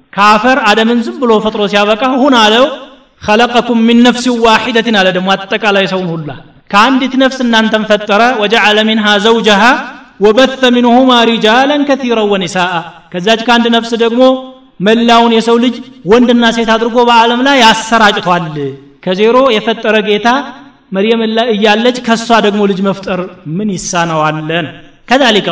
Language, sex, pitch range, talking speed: Amharic, male, 195-235 Hz, 120 wpm